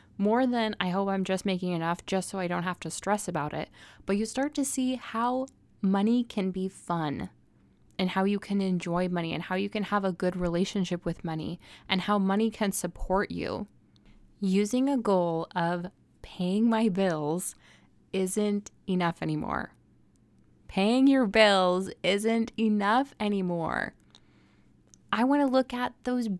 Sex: female